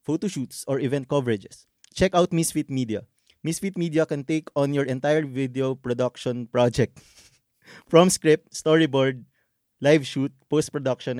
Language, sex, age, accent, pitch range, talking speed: Filipino, male, 20-39, native, 120-160 Hz, 130 wpm